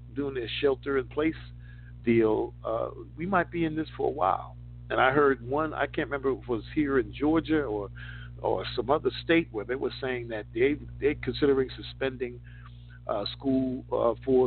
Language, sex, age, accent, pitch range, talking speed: English, male, 50-69, American, 100-125 Hz, 190 wpm